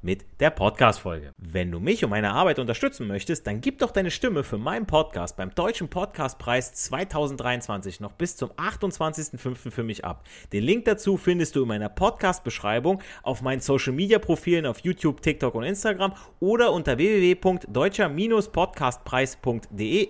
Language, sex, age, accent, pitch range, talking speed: German, male, 30-49, German, 110-165 Hz, 145 wpm